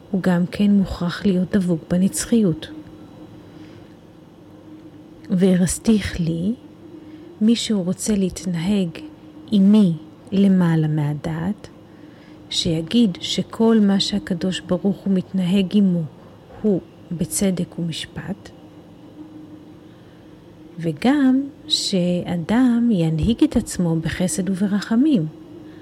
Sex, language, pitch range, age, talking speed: female, Hebrew, 160-200 Hz, 40-59, 80 wpm